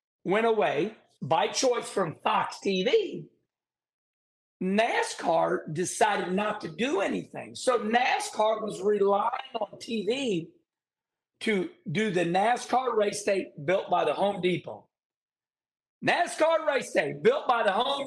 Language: English